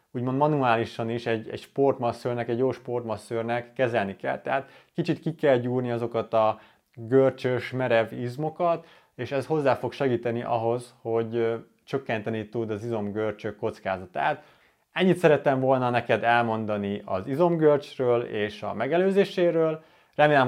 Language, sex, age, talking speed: Hungarian, male, 30-49, 130 wpm